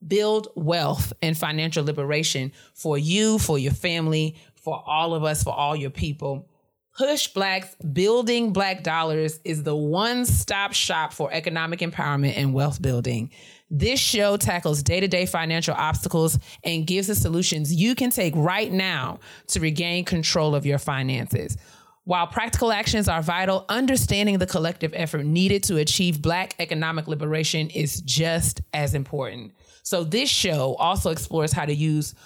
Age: 30-49